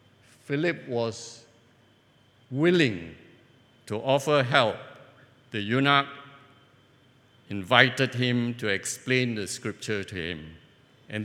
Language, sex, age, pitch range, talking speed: English, male, 50-69, 115-150 Hz, 90 wpm